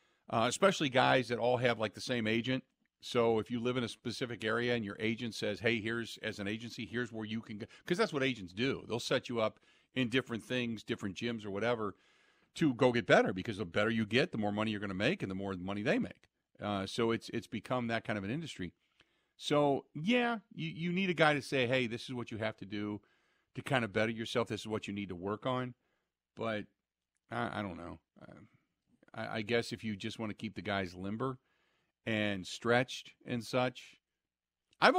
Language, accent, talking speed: English, American, 230 wpm